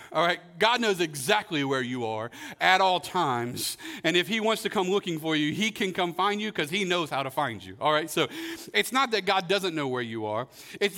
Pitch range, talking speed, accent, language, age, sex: 150-215 Hz, 245 wpm, American, English, 40-59, male